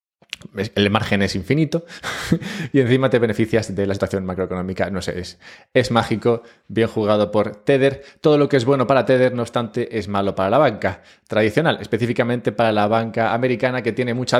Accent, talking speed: Spanish, 185 wpm